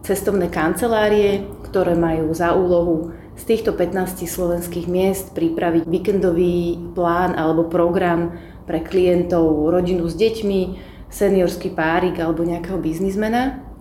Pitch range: 165-190 Hz